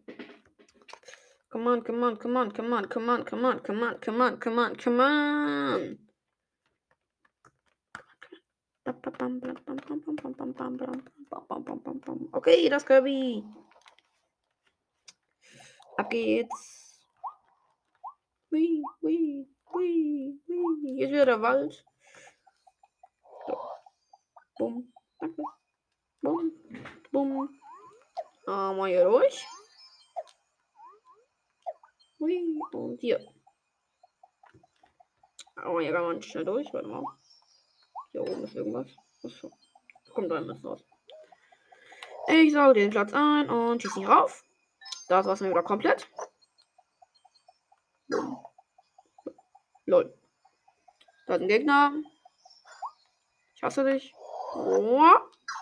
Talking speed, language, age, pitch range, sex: 90 wpm, German, 20-39, 255-370 Hz, female